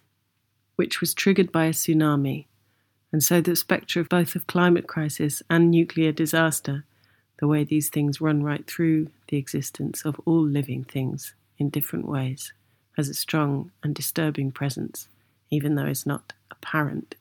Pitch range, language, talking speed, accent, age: 130-160 Hz, English, 155 wpm, British, 40-59